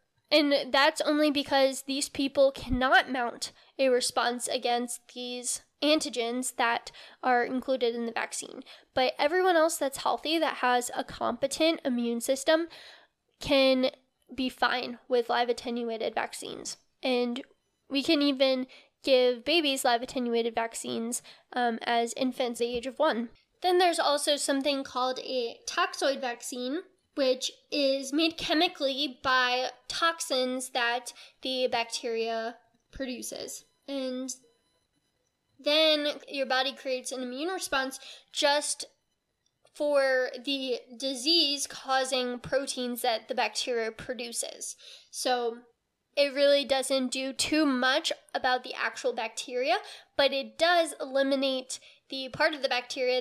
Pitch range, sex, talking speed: 245-290 Hz, female, 125 wpm